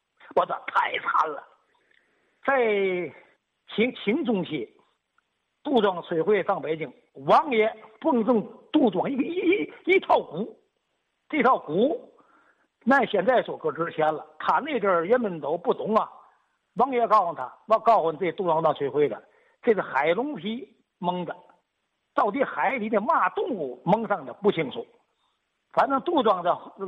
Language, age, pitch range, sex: Chinese, 50-69, 185-270 Hz, male